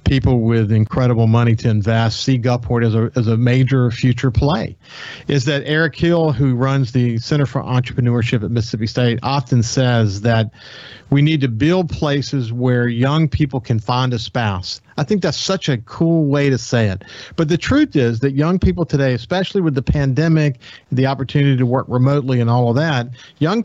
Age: 40-59